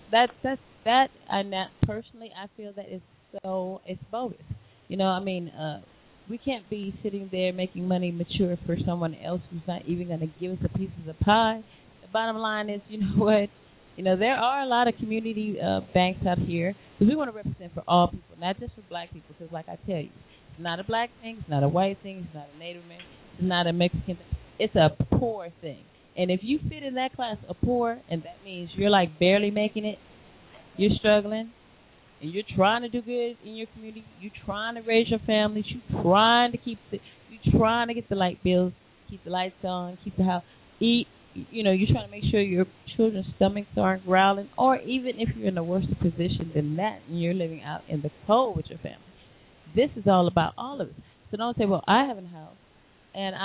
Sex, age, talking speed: female, 30-49, 230 wpm